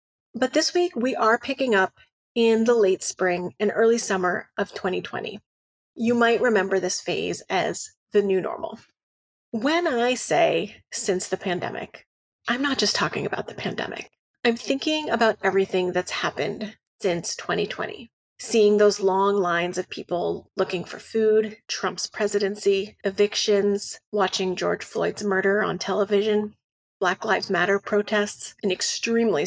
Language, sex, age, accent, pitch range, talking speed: English, female, 30-49, American, 200-235 Hz, 145 wpm